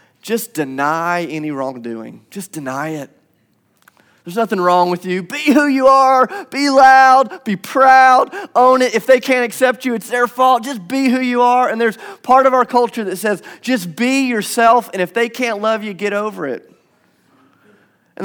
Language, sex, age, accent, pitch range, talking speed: English, male, 30-49, American, 175-255 Hz, 185 wpm